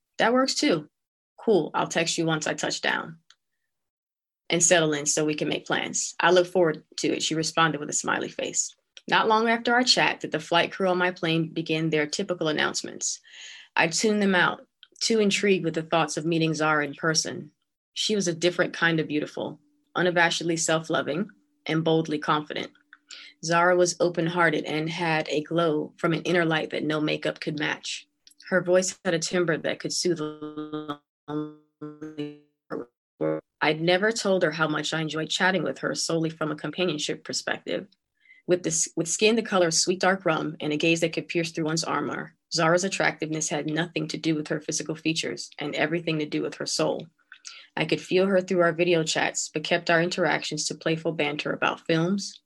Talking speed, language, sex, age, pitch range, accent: 190 wpm, English, female, 20-39, 155-180 Hz, American